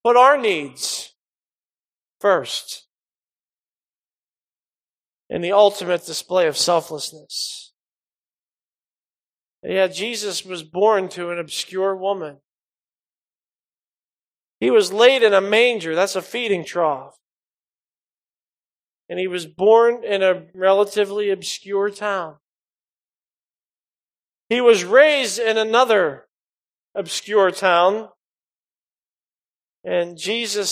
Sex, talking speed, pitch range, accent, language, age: male, 90 wpm, 180-220 Hz, American, English, 40-59